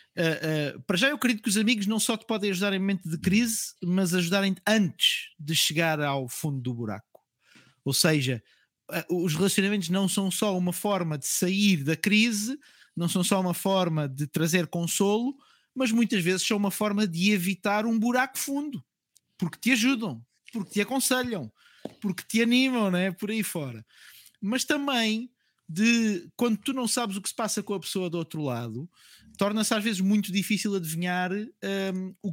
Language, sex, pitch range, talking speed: Portuguese, male, 175-220 Hz, 175 wpm